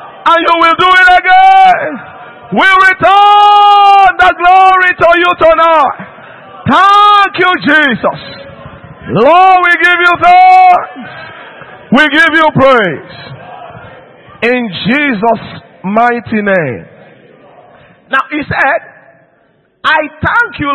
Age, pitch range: 50-69, 205-330 Hz